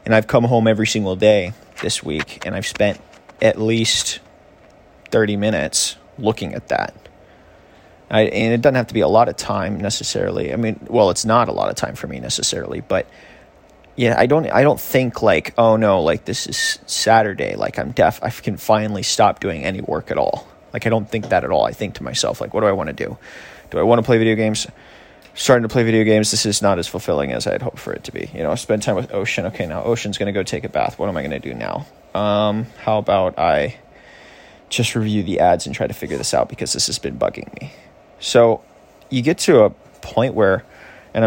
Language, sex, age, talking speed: English, male, 20-39, 230 wpm